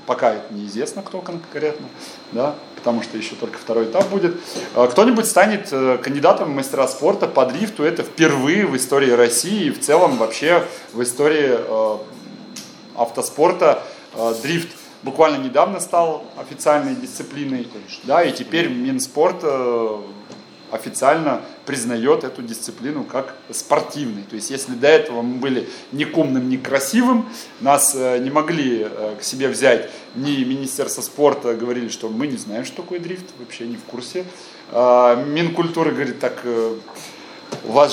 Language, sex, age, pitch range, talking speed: Russian, male, 30-49, 120-175 Hz, 135 wpm